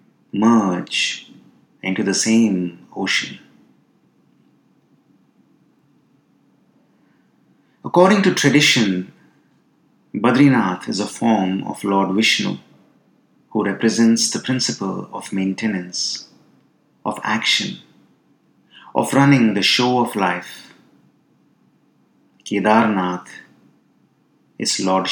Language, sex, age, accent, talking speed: English, male, 30-49, Indian, 75 wpm